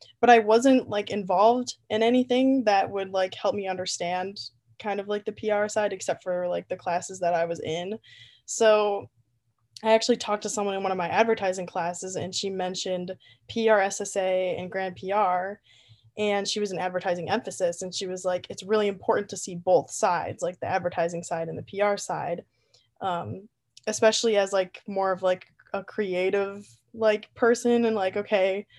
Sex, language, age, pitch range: female, English, 10-29, 185-215 Hz